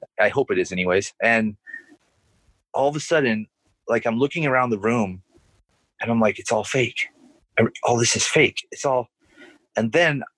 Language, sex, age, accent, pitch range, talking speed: English, male, 30-49, American, 110-155 Hz, 175 wpm